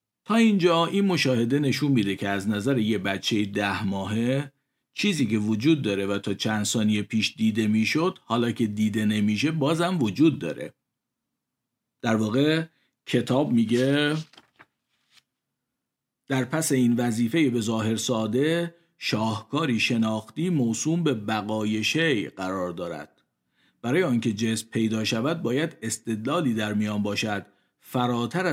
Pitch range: 105-140 Hz